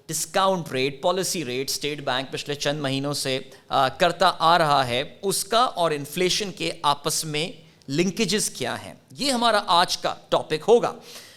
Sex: male